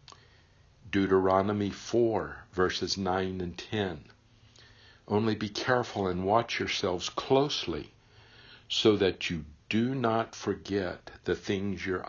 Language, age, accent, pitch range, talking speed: English, 60-79, American, 90-115 Hz, 110 wpm